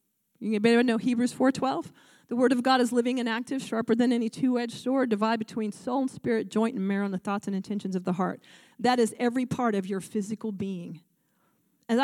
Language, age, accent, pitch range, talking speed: English, 40-59, American, 215-265 Hz, 225 wpm